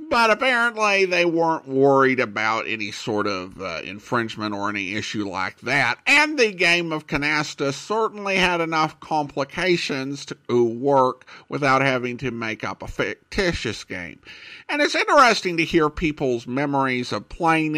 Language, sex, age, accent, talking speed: English, male, 50-69, American, 150 wpm